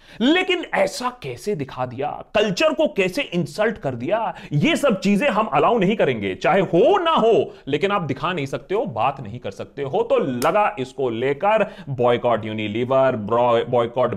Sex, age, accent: male, 30-49, native